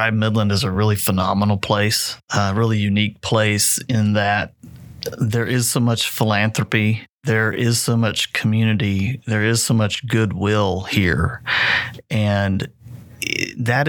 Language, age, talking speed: English, 30-49, 130 wpm